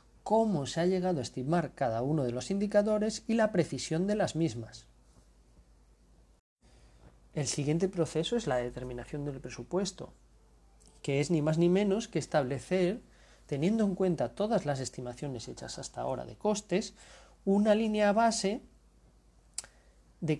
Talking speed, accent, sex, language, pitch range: 140 wpm, Spanish, male, Spanish, 120-180 Hz